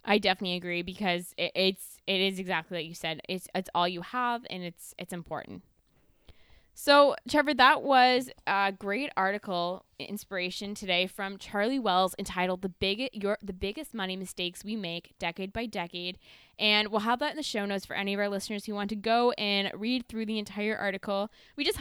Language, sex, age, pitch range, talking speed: English, female, 20-39, 185-225 Hz, 195 wpm